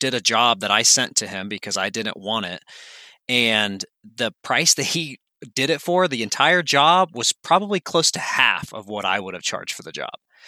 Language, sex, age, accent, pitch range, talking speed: English, male, 30-49, American, 115-155 Hz, 220 wpm